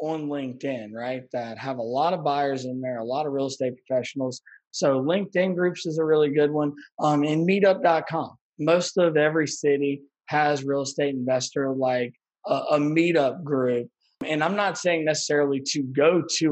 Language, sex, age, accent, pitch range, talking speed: English, male, 20-39, American, 125-155 Hz, 180 wpm